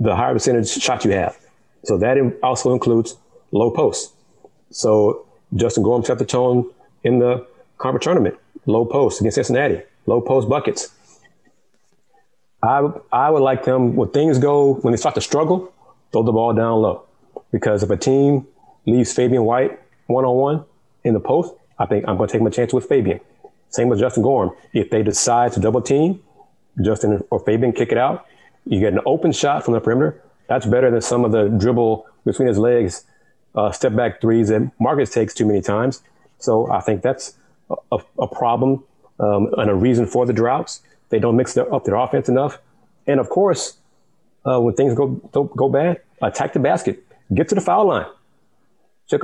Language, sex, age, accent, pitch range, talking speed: English, male, 30-49, American, 115-140 Hz, 185 wpm